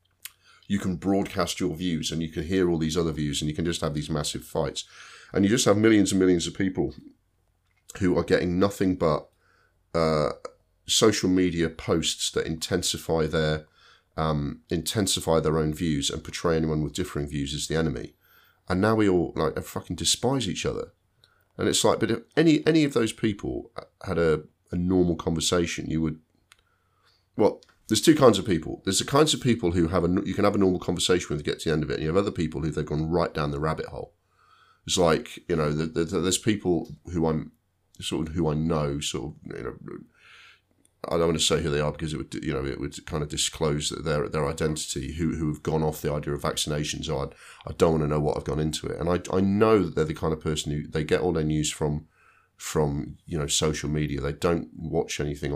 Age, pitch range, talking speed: 40-59, 75-90 Hz, 225 wpm